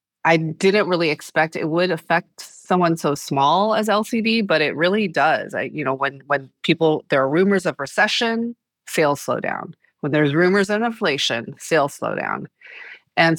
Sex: female